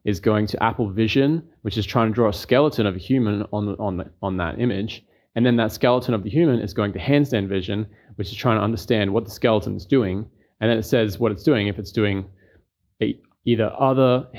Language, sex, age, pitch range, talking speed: English, male, 20-39, 100-120 Hz, 240 wpm